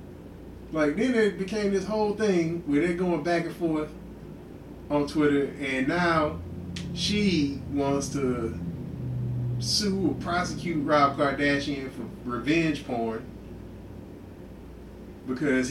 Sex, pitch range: male, 125-150 Hz